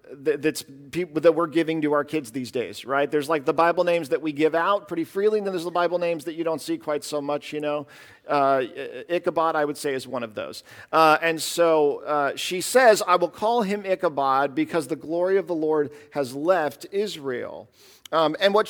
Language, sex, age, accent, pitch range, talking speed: English, male, 50-69, American, 145-190 Hz, 220 wpm